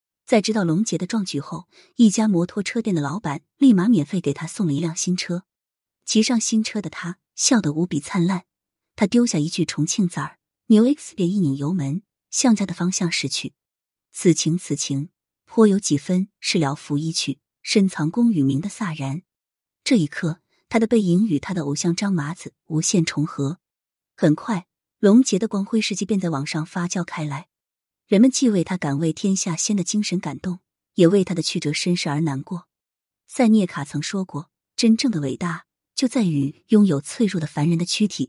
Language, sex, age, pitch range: Chinese, female, 20-39, 155-205 Hz